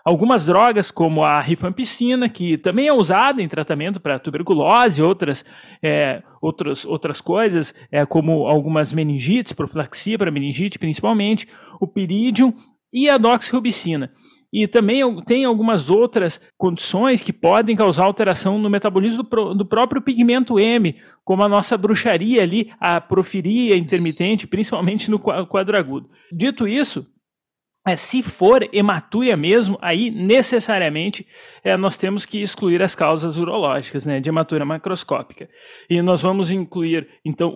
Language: Portuguese